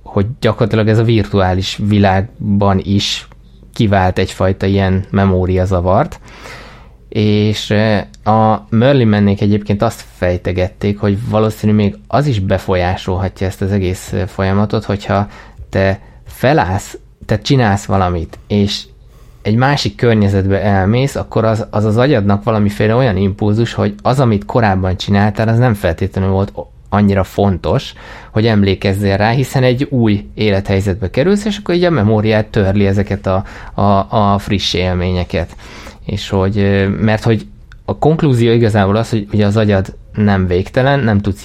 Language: Hungarian